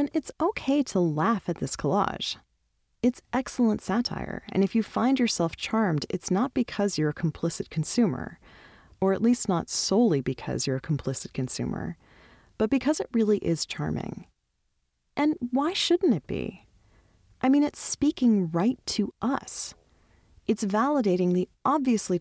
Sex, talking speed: female, 150 wpm